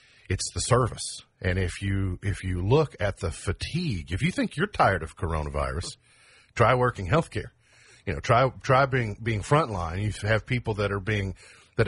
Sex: male